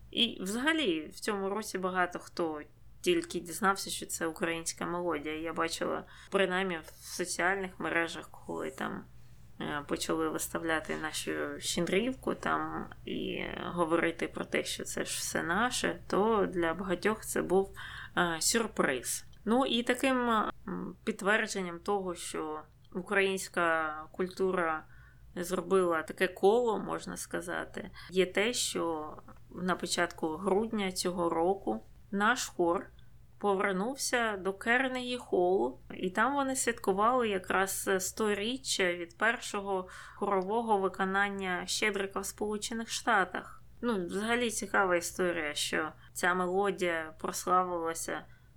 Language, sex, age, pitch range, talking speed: Ukrainian, female, 20-39, 170-205 Hz, 110 wpm